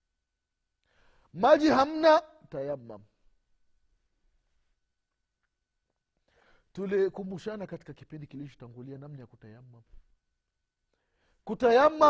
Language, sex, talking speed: Swahili, male, 55 wpm